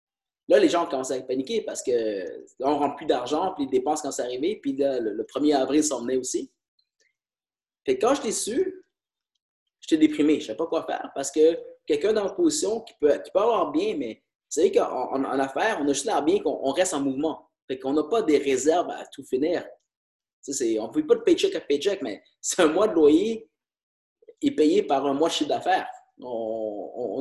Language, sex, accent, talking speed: English, male, Canadian, 225 wpm